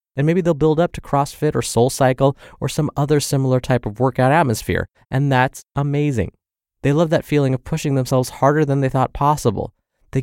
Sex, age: male, 20-39